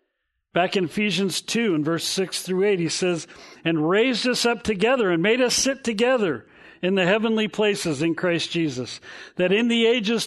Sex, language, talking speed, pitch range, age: male, English, 185 wpm, 145-210 Hz, 50-69